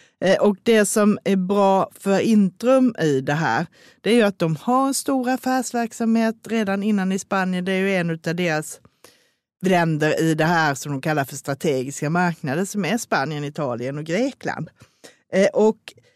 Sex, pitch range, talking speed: female, 155-215 Hz, 170 wpm